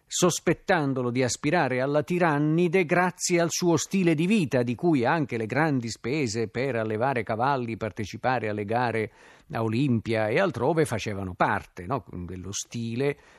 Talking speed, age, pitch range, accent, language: 140 wpm, 50-69, 115-155 Hz, native, Italian